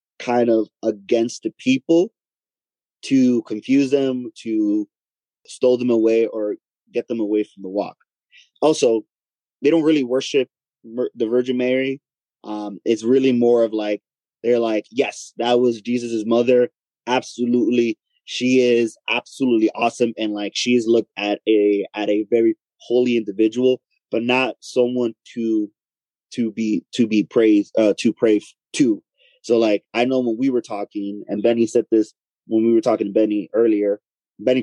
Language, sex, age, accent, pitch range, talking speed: English, male, 20-39, American, 110-125 Hz, 155 wpm